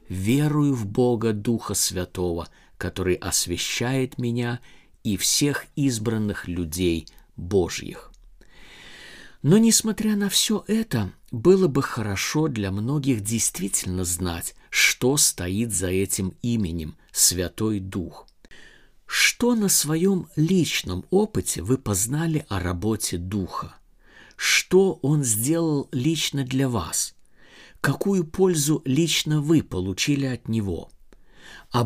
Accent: native